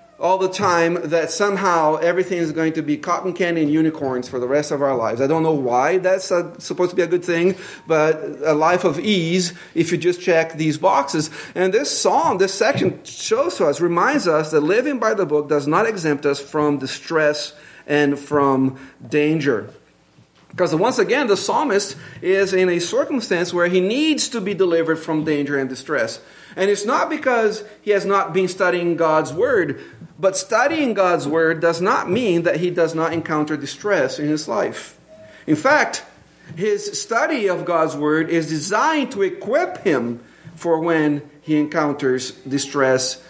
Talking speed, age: 175 wpm, 40-59